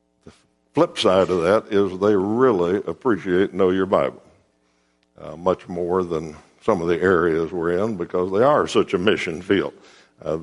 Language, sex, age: English, male, 60-79